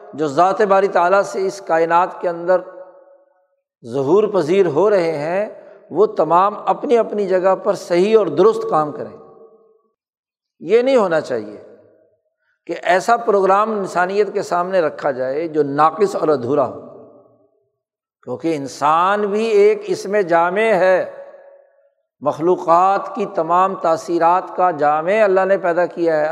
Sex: male